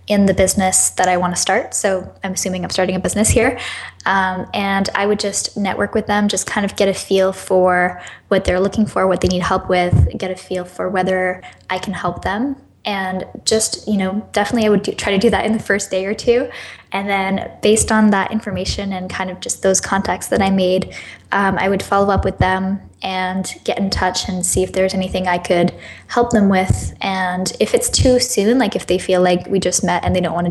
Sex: female